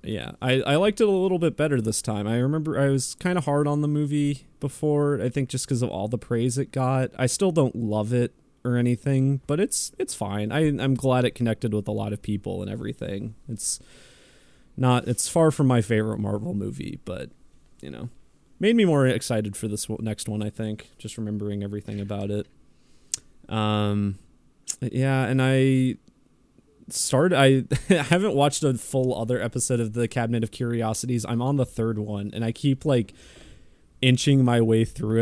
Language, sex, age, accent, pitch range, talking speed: English, male, 20-39, American, 110-135 Hz, 195 wpm